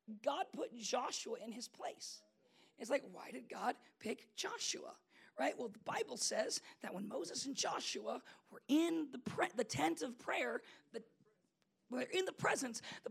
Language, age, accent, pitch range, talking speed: English, 40-59, American, 230-305 Hz, 165 wpm